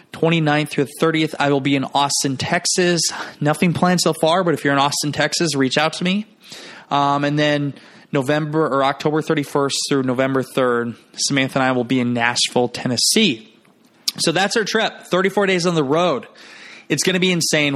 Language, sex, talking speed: English, male, 190 wpm